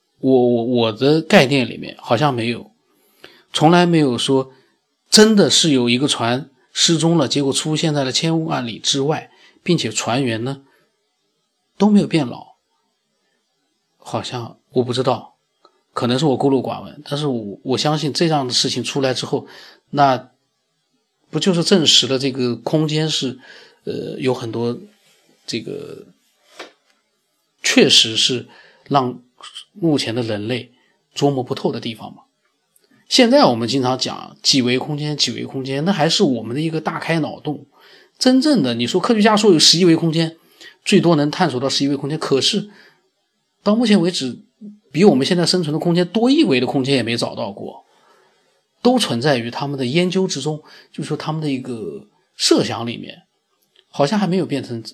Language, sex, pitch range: Chinese, male, 125-170 Hz